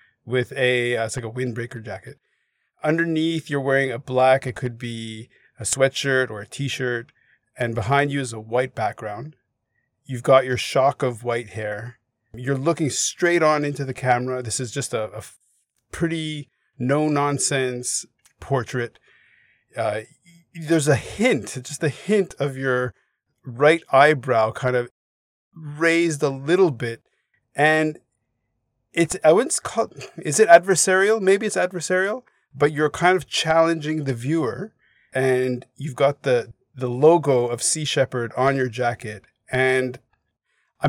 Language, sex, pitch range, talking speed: English, male, 120-150 Hz, 145 wpm